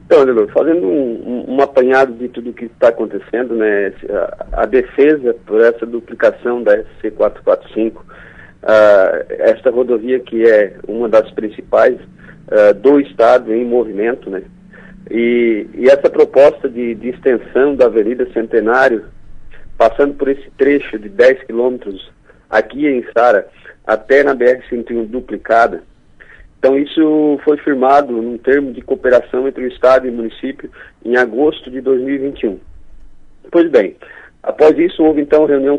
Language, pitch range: Portuguese, 120-150 Hz